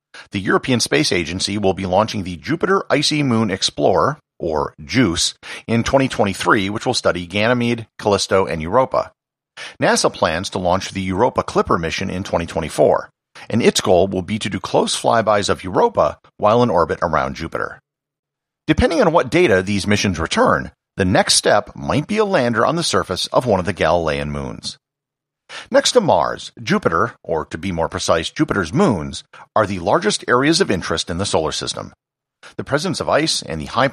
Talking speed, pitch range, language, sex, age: 175 wpm, 95-145 Hz, English, male, 50-69